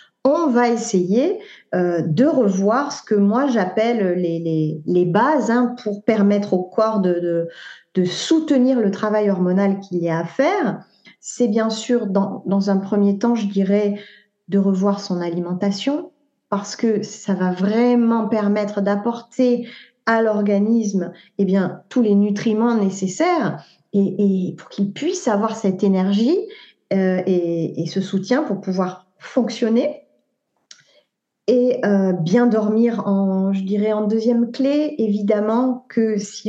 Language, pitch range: French, 195-235 Hz